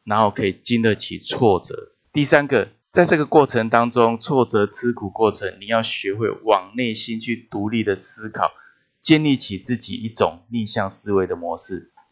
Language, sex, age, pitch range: Chinese, male, 20-39, 100-125 Hz